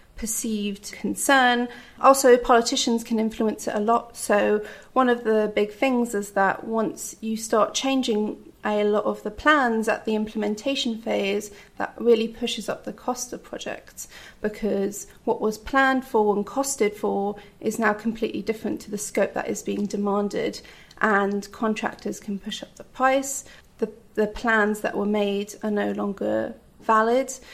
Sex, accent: female, British